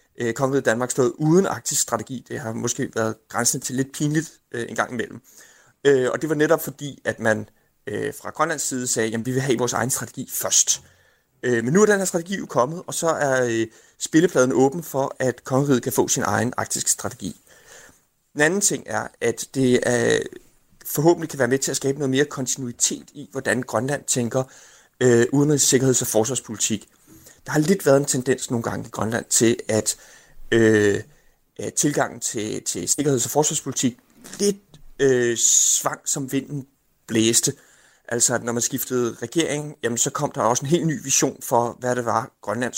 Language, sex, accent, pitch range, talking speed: Danish, male, native, 120-150 Hz, 180 wpm